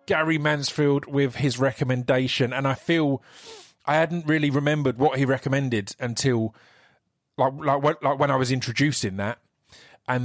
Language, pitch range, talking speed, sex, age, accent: English, 125-155 Hz, 150 wpm, male, 30-49, British